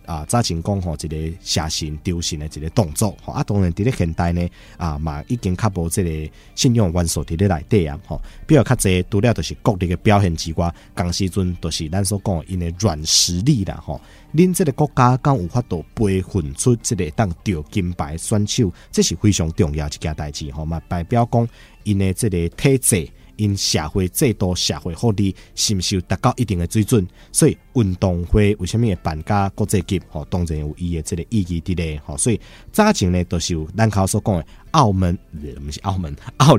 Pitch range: 85-110 Hz